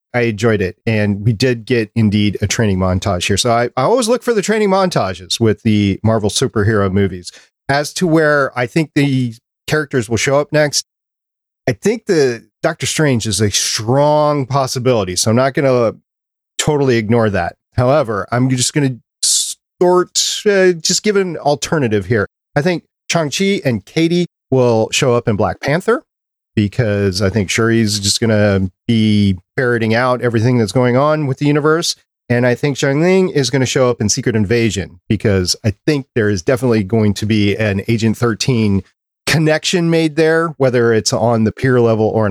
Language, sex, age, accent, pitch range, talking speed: English, male, 40-59, American, 110-145 Hz, 185 wpm